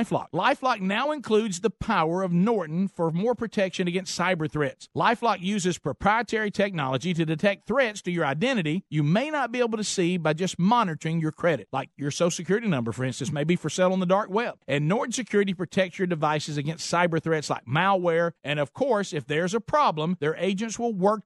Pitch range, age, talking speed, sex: 160-215 Hz, 50-69, 205 wpm, male